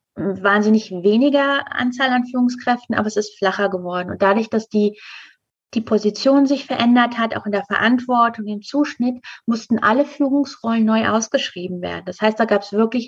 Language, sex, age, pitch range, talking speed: German, female, 30-49, 205-235 Hz, 170 wpm